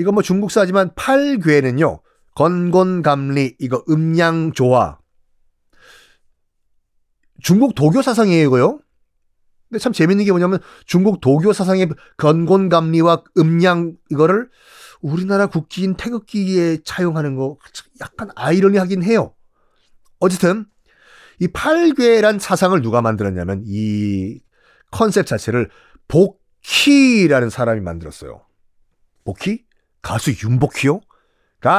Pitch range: 135-190 Hz